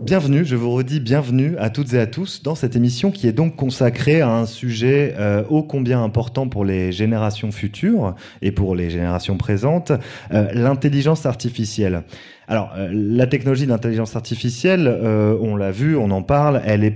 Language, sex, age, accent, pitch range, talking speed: English, male, 30-49, French, 100-125 Hz, 170 wpm